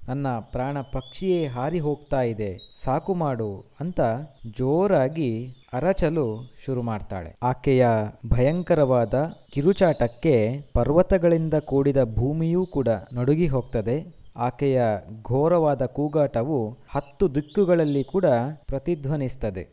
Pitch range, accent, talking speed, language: 115-155 Hz, native, 90 wpm, Kannada